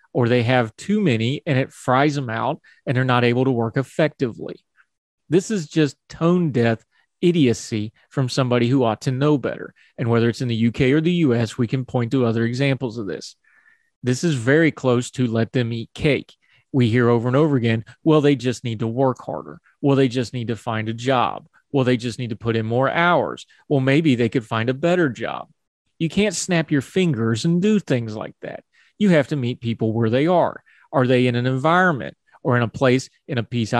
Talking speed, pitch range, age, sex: 220 wpm, 120-145 Hz, 30-49, male